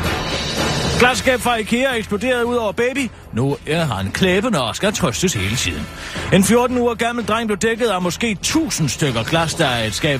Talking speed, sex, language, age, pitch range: 180 wpm, male, Danish, 40-59, 115-195 Hz